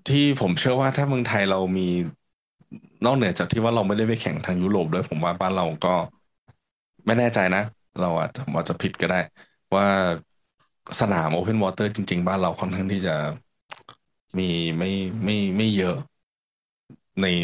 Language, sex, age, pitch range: Thai, male, 20-39, 90-105 Hz